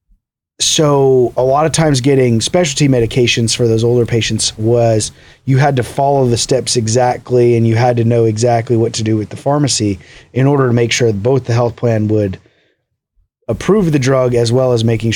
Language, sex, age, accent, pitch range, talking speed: English, male, 30-49, American, 110-130 Hz, 200 wpm